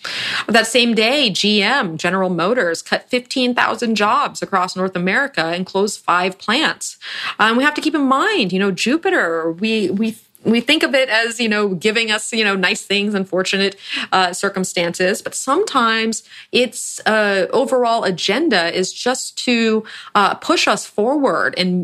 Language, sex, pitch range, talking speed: English, female, 185-250 Hz, 160 wpm